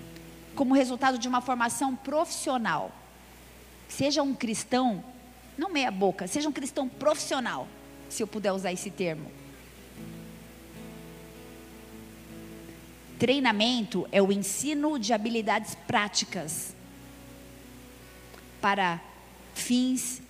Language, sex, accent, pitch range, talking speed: Portuguese, female, Brazilian, 175-260 Hz, 90 wpm